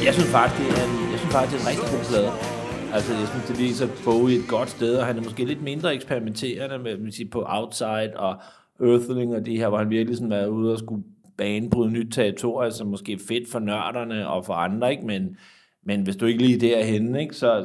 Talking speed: 250 wpm